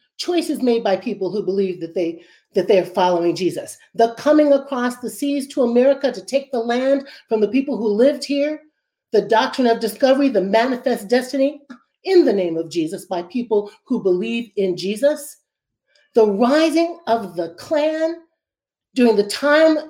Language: English